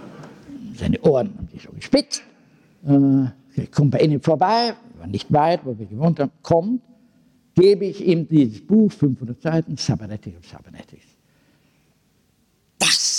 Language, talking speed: German, 135 wpm